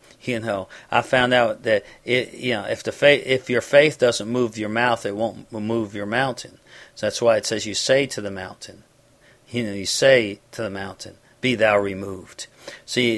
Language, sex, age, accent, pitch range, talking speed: English, male, 50-69, American, 110-125 Hz, 205 wpm